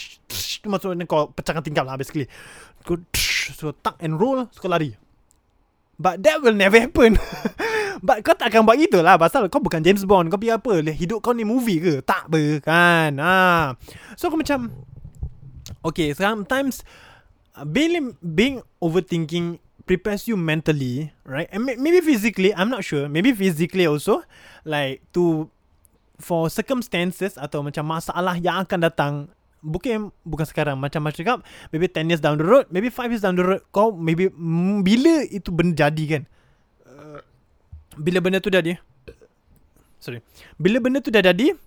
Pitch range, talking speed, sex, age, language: 155-215 Hz, 155 wpm, male, 20-39, Malay